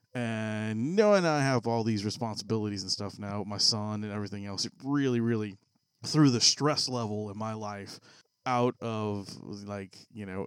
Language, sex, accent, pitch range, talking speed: English, male, American, 100-130 Hz, 180 wpm